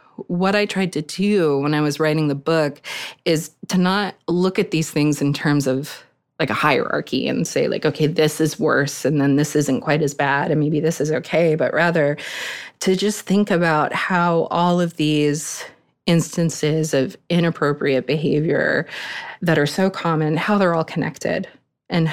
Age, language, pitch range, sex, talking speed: 20-39, English, 145-170 Hz, female, 180 wpm